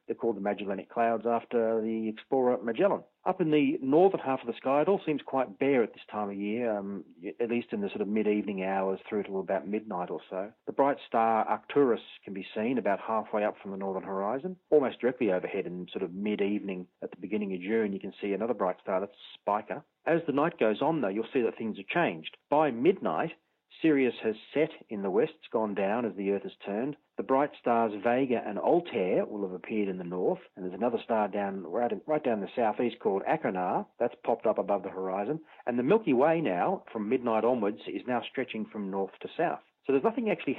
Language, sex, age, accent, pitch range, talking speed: English, male, 40-59, Australian, 100-135 Hz, 230 wpm